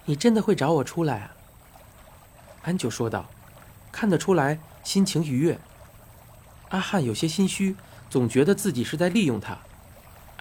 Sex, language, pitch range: male, Chinese, 100-165 Hz